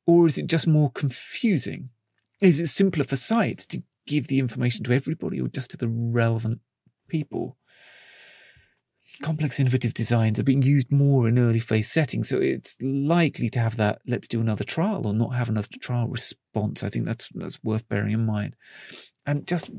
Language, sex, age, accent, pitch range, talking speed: English, male, 30-49, British, 115-150 Hz, 180 wpm